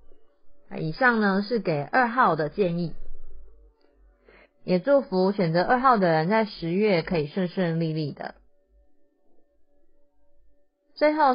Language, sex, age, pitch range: Chinese, female, 30-49, 165-220 Hz